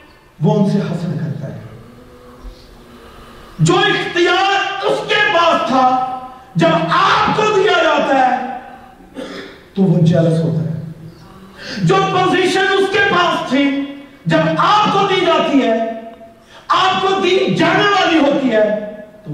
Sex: male